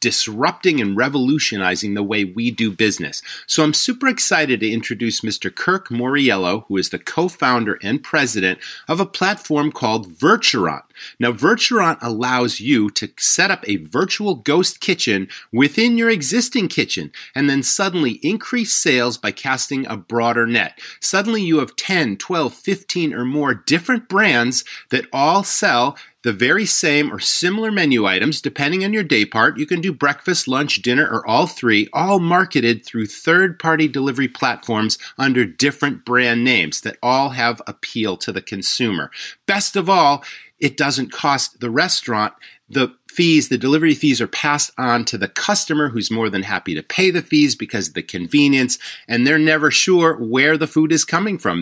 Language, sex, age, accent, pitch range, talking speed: English, male, 30-49, American, 115-160 Hz, 170 wpm